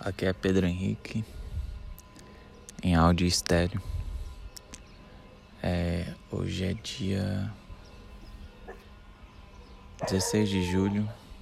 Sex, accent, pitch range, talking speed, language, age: male, Brazilian, 90-105 Hz, 70 wpm, Portuguese, 20-39